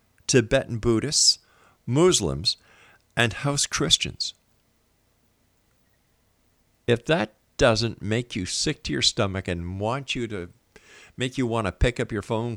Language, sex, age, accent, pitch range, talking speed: English, male, 50-69, American, 90-115 Hz, 130 wpm